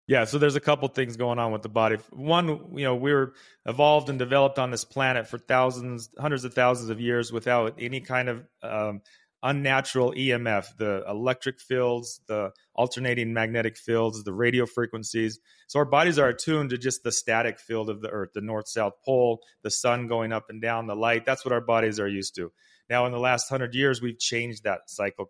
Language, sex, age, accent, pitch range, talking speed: English, male, 30-49, American, 105-125 Hz, 205 wpm